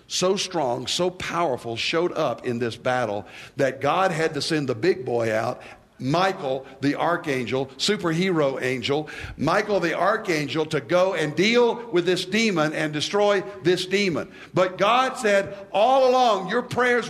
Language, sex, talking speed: English, male, 155 wpm